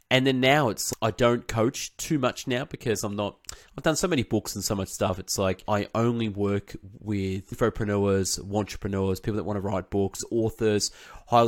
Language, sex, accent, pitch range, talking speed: English, male, Australian, 100-120 Hz, 200 wpm